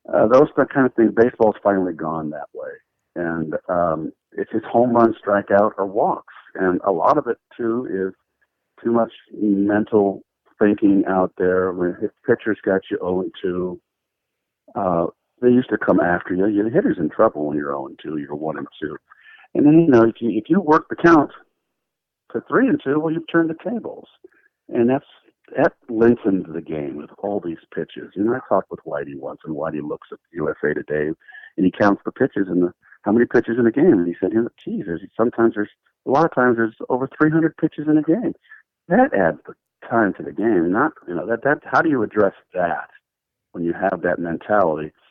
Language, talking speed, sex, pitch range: English, 200 wpm, male, 90-130 Hz